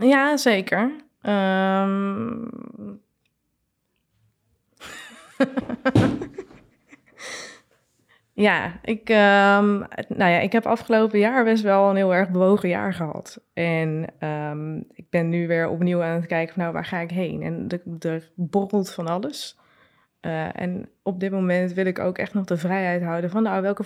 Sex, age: female, 20-39